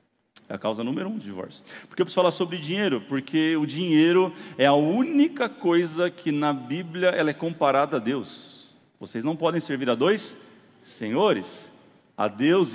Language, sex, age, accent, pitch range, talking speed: Portuguese, male, 40-59, Brazilian, 130-180 Hz, 180 wpm